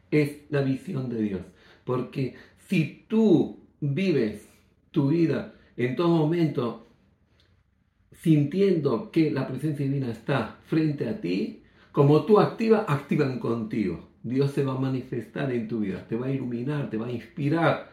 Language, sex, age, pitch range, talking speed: Greek, male, 50-69, 120-155 Hz, 145 wpm